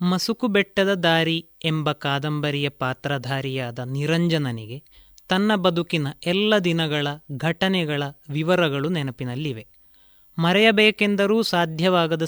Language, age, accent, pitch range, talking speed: Kannada, 30-49, native, 155-195 Hz, 80 wpm